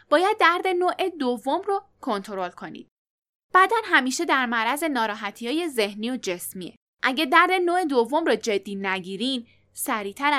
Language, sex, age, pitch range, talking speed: Persian, female, 10-29, 220-335 Hz, 135 wpm